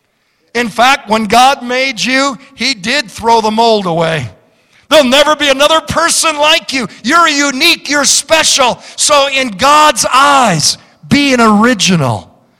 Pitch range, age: 185-245 Hz, 50-69